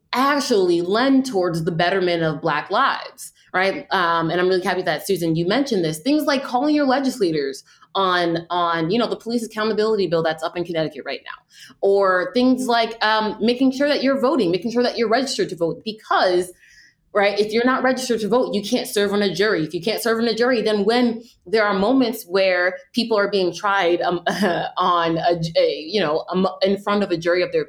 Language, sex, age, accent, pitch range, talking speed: English, female, 20-39, American, 175-250 Hz, 215 wpm